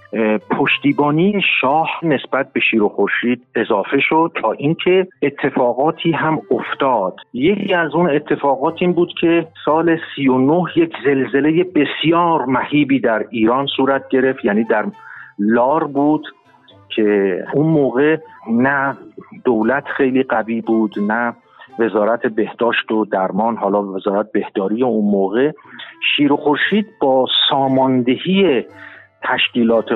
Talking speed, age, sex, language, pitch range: 115 wpm, 50-69, male, Persian, 120-175 Hz